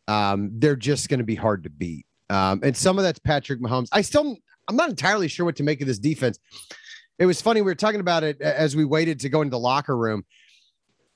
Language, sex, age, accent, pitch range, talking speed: English, male, 30-49, American, 130-170 Hz, 240 wpm